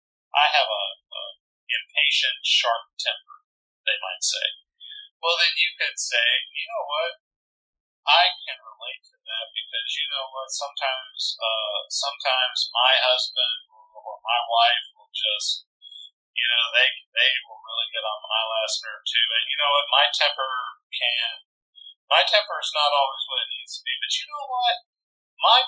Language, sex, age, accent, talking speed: English, male, 40-59, American, 165 wpm